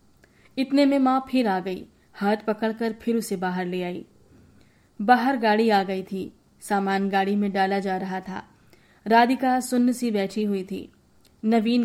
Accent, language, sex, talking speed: native, Hindi, female, 160 wpm